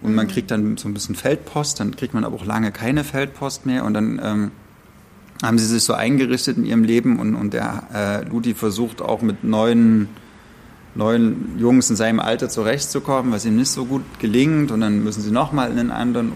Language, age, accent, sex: German, 30-49, German, male